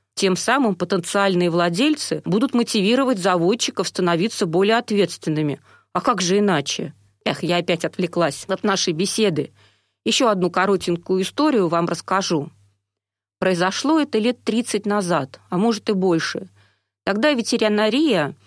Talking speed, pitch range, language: 125 wpm, 170-215 Hz, Russian